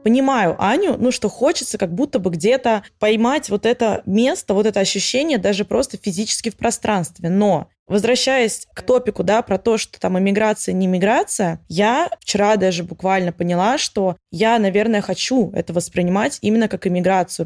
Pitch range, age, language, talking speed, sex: 185-230 Hz, 20-39, Russian, 160 wpm, female